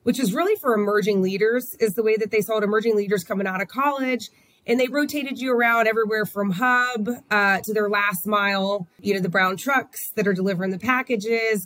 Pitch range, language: 190-225 Hz, English